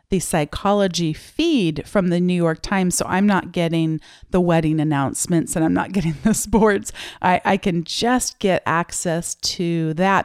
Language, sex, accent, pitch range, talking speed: English, female, American, 170-220 Hz, 170 wpm